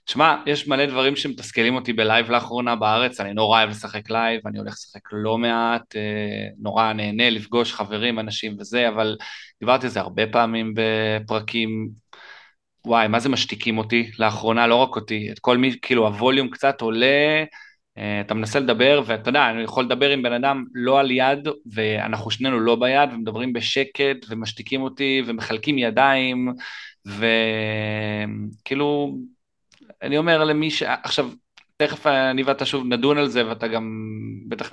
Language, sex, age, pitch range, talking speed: Hebrew, male, 20-39, 110-140 Hz, 155 wpm